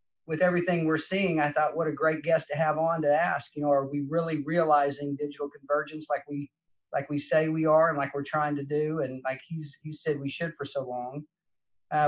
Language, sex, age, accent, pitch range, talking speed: English, male, 40-59, American, 140-165 Hz, 235 wpm